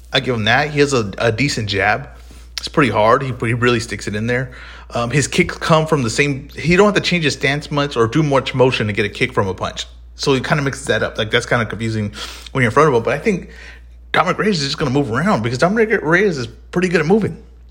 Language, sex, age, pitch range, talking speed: English, male, 30-49, 105-150 Hz, 280 wpm